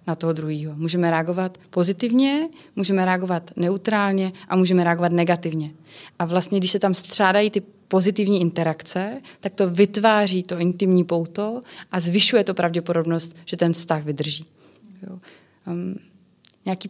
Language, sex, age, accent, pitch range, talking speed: Czech, female, 20-39, native, 170-200 Hz, 140 wpm